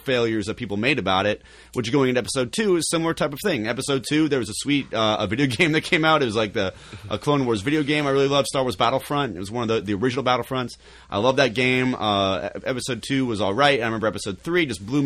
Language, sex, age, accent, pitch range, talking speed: English, male, 30-49, American, 110-140 Hz, 275 wpm